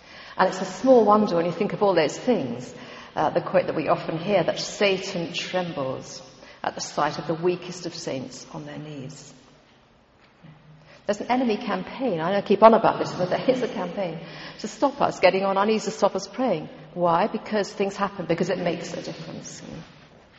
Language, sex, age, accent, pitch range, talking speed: English, female, 50-69, British, 170-210 Hz, 200 wpm